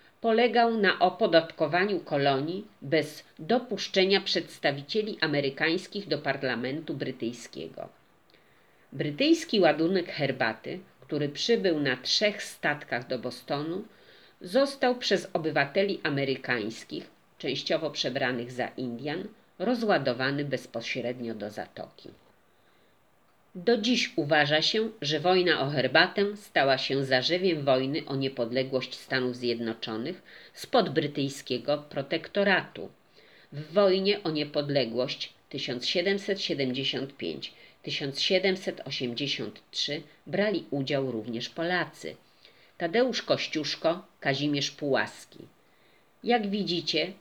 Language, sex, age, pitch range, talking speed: Polish, female, 40-59, 135-190 Hz, 85 wpm